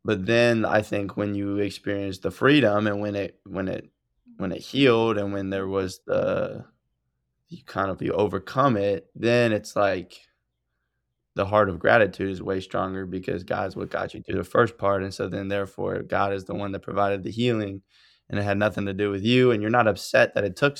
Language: English